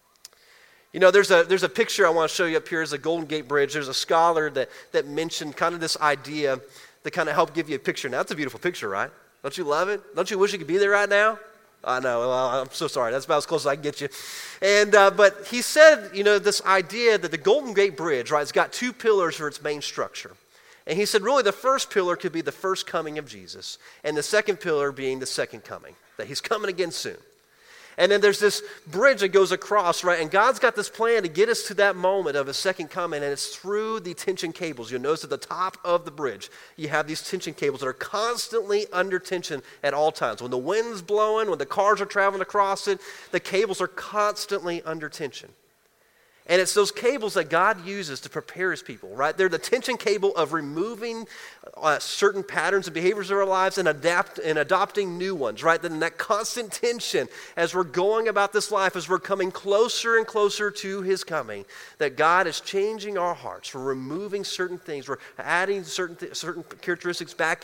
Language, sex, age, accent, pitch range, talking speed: English, male, 30-49, American, 160-205 Hz, 230 wpm